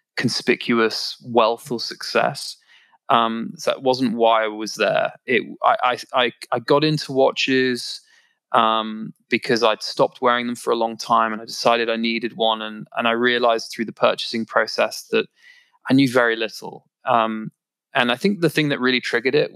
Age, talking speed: 20-39, 170 wpm